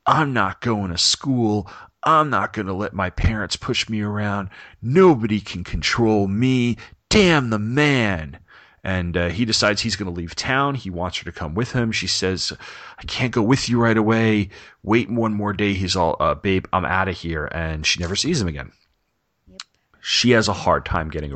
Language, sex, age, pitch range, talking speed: English, male, 40-59, 85-110 Hz, 200 wpm